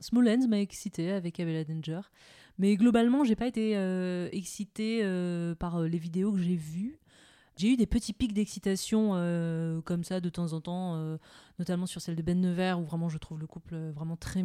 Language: French